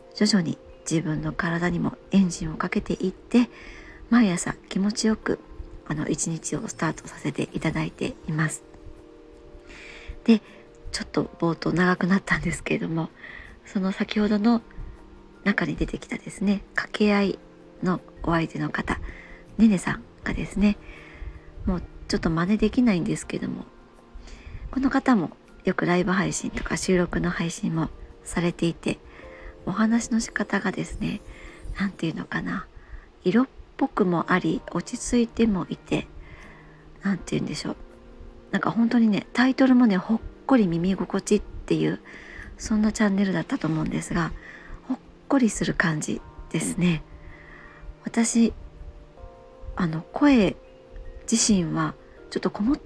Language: Japanese